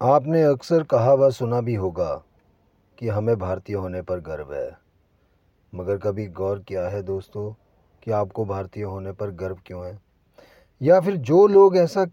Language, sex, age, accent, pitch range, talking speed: Hindi, male, 40-59, native, 100-150 Hz, 165 wpm